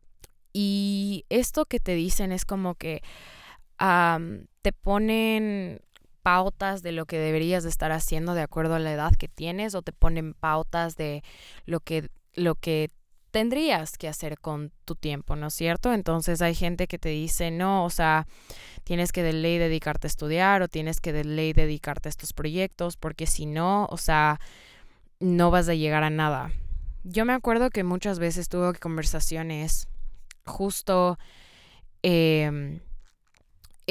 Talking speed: 160 wpm